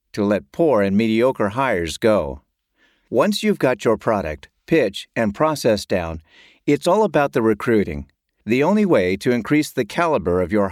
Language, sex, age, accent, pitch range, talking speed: English, male, 50-69, American, 100-145 Hz, 170 wpm